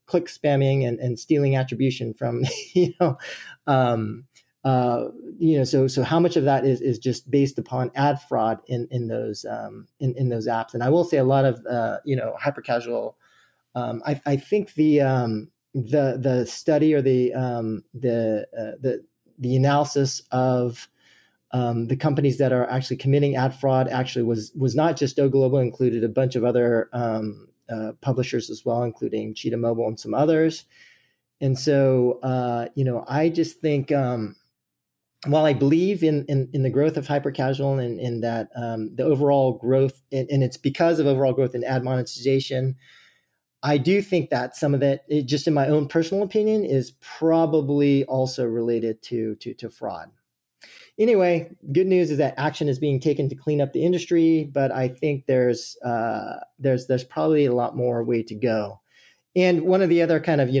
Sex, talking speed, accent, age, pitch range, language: male, 190 wpm, American, 30-49, 125-145 Hz, English